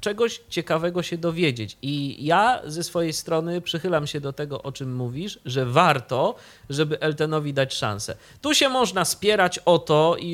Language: Polish